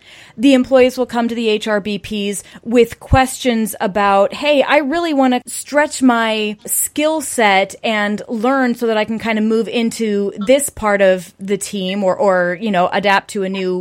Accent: American